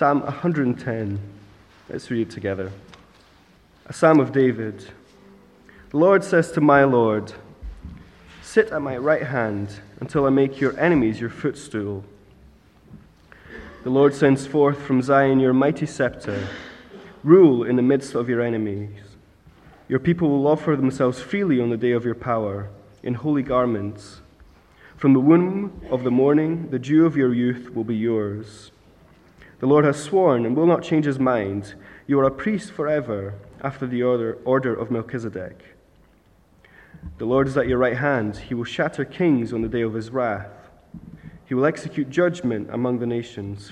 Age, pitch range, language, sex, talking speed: 20-39, 100-140 Hz, English, male, 160 wpm